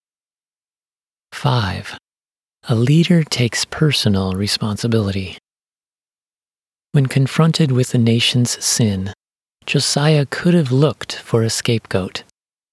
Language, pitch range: English, 105-135 Hz